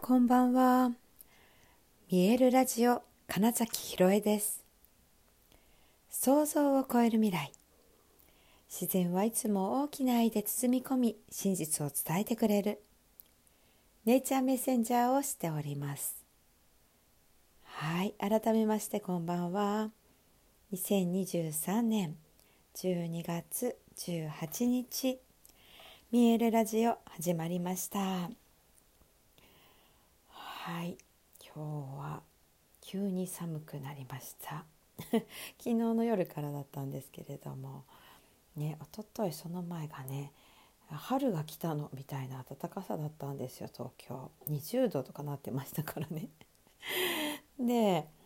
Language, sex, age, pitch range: Japanese, female, 60-79, 145-225 Hz